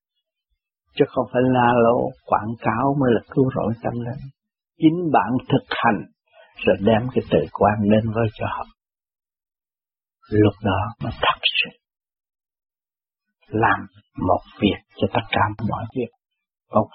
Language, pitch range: Vietnamese, 110-150 Hz